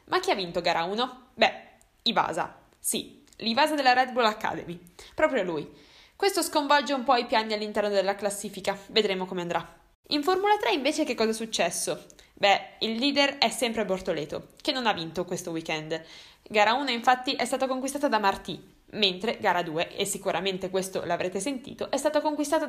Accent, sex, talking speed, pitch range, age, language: native, female, 175 wpm, 190-275 Hz, 10-29, Italian